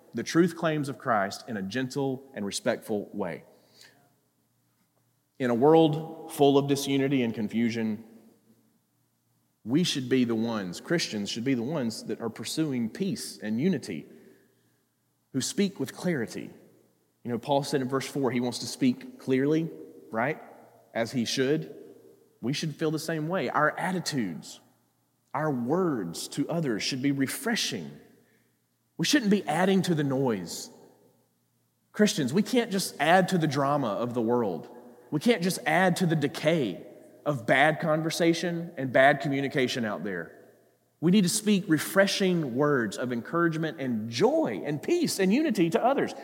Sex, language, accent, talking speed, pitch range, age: male, English, American, 155 wpm, 135-195 Hz, 30-49